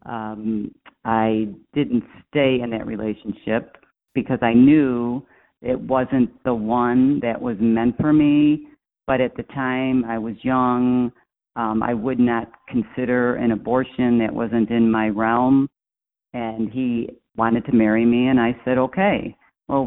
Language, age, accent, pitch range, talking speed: English, 50-69, American, 110-130 Hz, 150 wpm